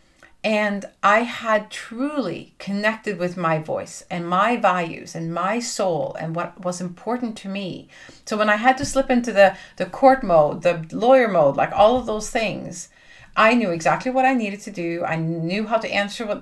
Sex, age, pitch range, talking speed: female, 40-59, 175-235 Hz, 195 wpm